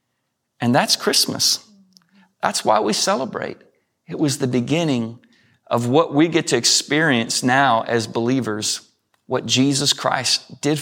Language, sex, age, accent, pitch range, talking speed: English, male, 30-49, American, 125-145 Hz, 135 wpm